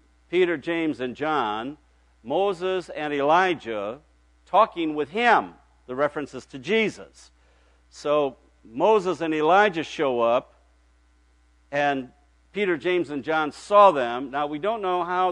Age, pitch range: 60-79, 115-155 Hz